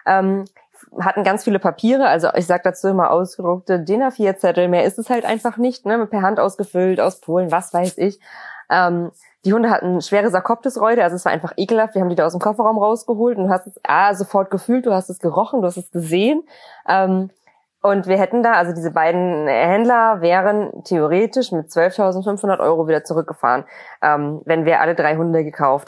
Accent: German